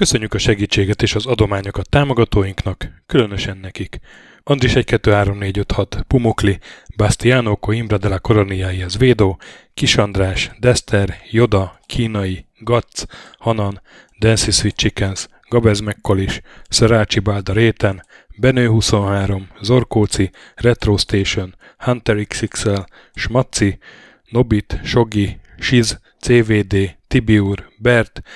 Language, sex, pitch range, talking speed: Hungarian, male, 100-120 Hz, 95 wpm